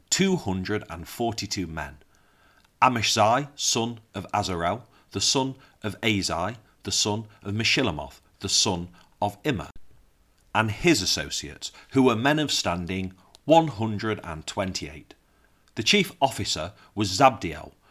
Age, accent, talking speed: 40-59, British, 135 wpm